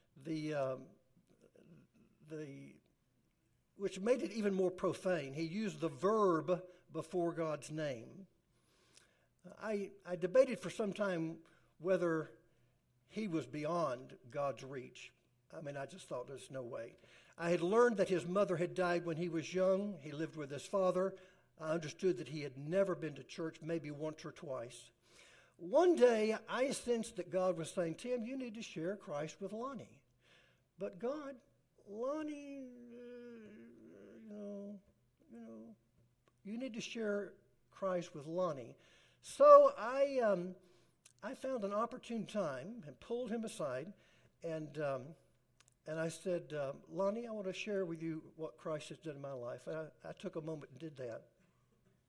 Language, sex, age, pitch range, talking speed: English, male, 60-79, 155-205 Hz, 160 wpm